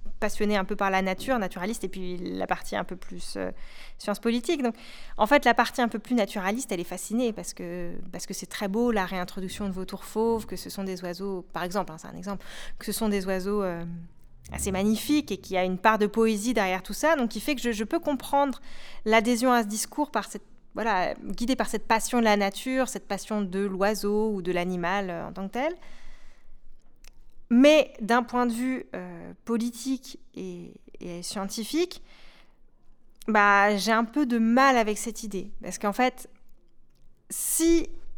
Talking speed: 200 wpm